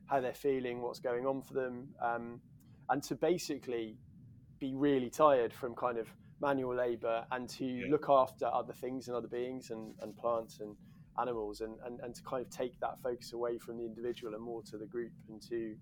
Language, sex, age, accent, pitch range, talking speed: English, male, 20-39, British, 115-130 Hz, 205 wpm